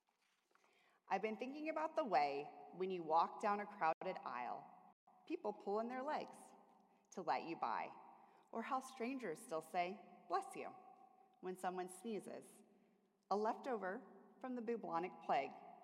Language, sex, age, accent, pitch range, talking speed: English, female, 30-49, American, 170-235 Hz, 145 wpm